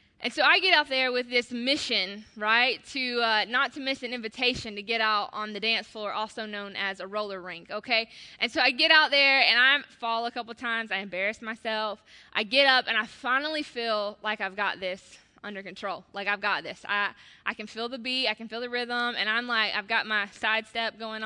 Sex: female